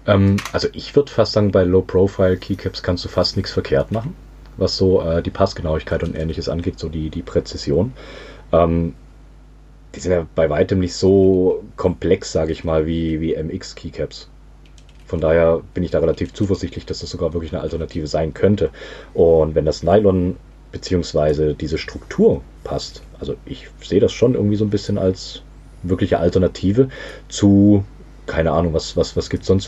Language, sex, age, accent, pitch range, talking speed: German, male, 30-49, German, 80-100 Hz, 170 wpm